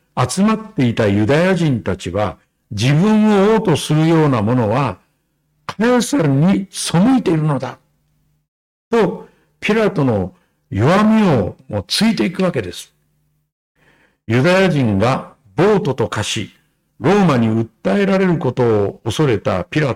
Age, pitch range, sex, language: 60-79, 125-190 Hz, male, Japanese